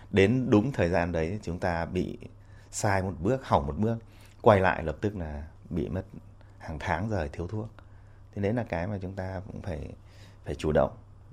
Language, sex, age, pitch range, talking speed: Vietnamese, male, 20-39, 85-105 Hz, 200 wpm